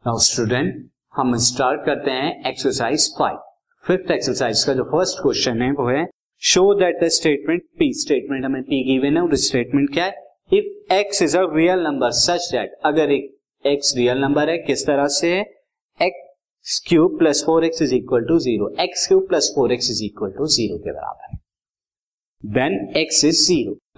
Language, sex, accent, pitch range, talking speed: Hindi, male, native, 130-205 Hz, 95 wpm